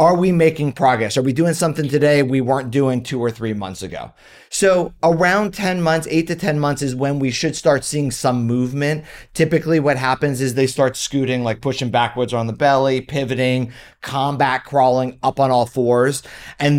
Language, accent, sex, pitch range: English, American, male, 130-160 Hz